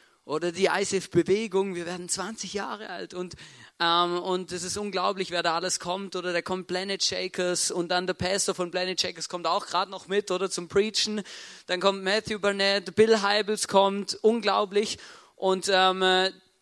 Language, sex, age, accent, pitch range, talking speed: German, male, 40-59, German, 155-195 Hz, 175 wpm